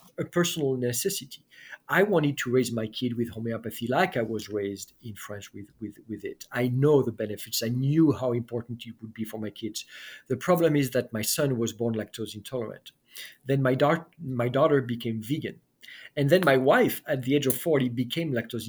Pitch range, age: 115-135 Hz, 50-69